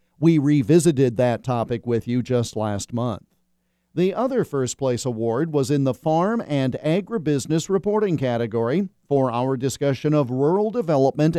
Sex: male